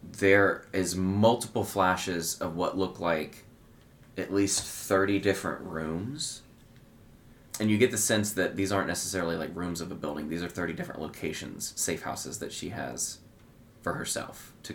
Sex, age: male, 20-39